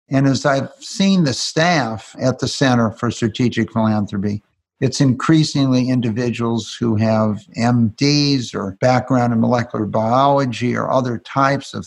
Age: 50-69